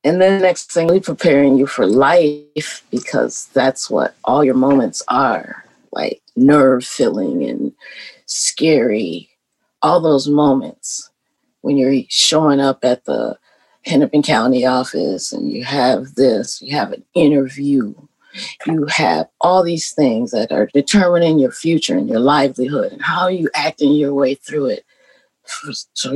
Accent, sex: American, female